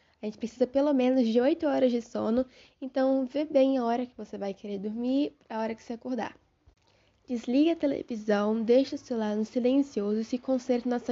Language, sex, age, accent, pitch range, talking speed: Portuguese, female, 10-29, Brazilian, 220-255 Hz, 205 wpm